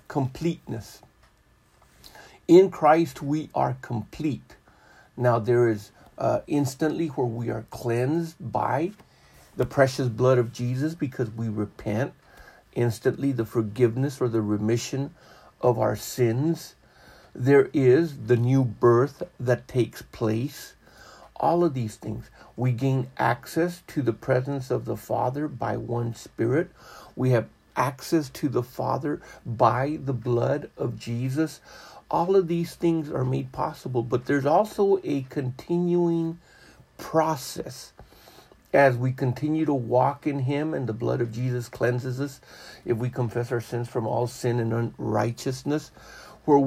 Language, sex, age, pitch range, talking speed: English, male, 50-69, 120-150 Hz, 135 wpm